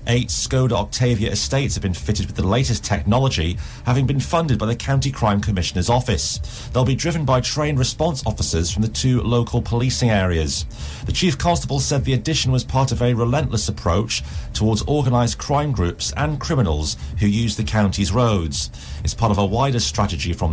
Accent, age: British, 40-59